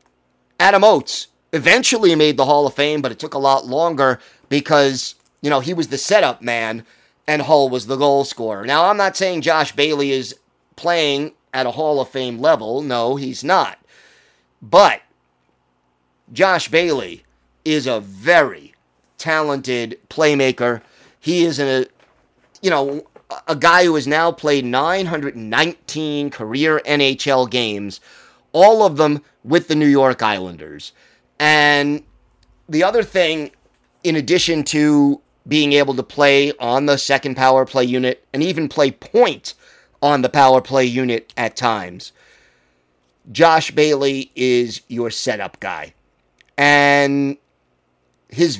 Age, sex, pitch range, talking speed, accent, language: 30-49, male, 120-155 Hz, 135 wpm, American, English